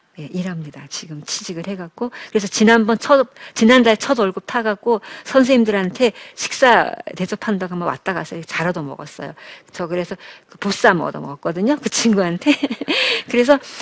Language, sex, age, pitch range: Korean, female, 50-69, 185-265 Hz